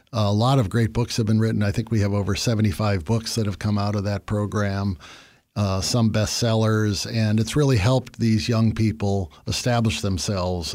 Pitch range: 95-110 Hz